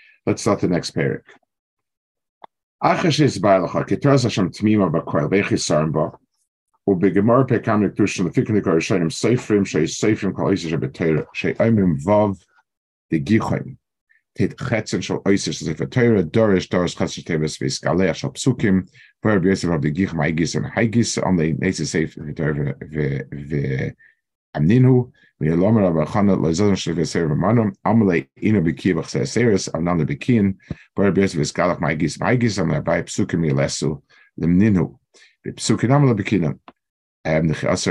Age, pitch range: 50-69, 80-110 Hz